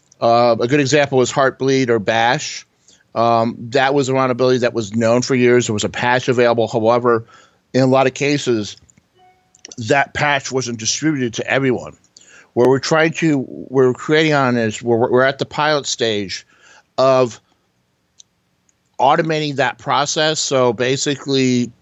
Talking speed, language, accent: 150 wpm, English, American